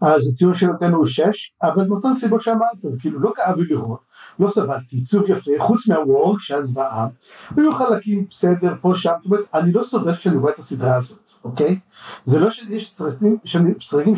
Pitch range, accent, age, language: 155-215 Hz, native, 50-69, Hebrew